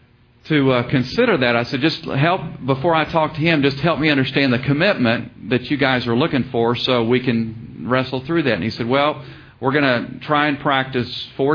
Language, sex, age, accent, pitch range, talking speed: English, male, 50-69, American, 120-150 Hz, 220 wpm